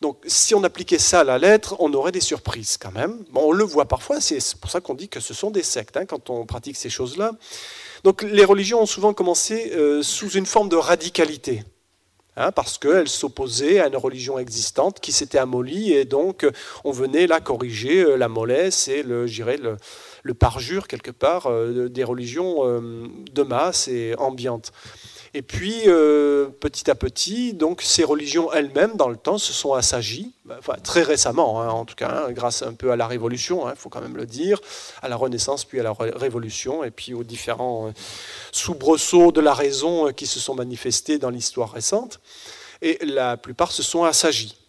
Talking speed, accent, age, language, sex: 195 wpm, French, 40-59, French, male